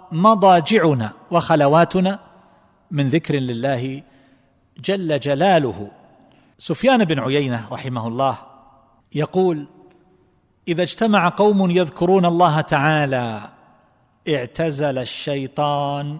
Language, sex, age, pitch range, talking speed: Arabic, male, 40-59, 135-185 Hz, 80 wpm